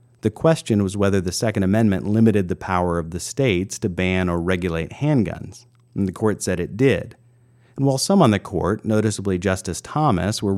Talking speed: 195 wpm